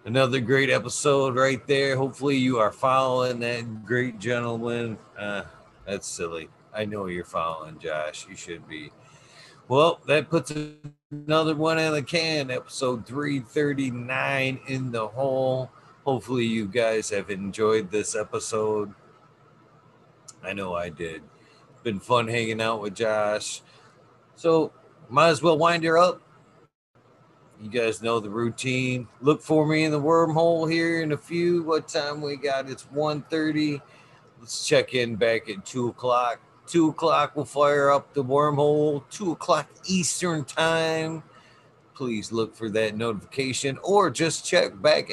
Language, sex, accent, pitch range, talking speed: English, male, American, 110-150 Hz, 145 wpm